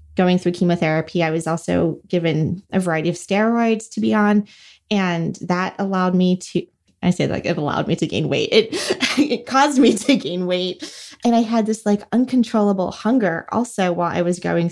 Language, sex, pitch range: English, female, 170-205 Hz